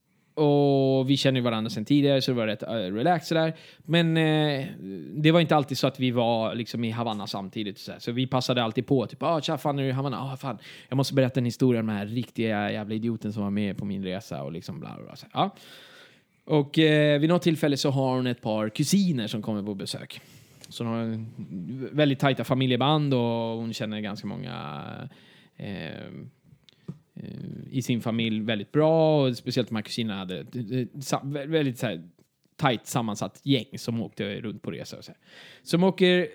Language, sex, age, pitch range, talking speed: Swedish, male, 20-39, 115-145 Hz, 185 wpm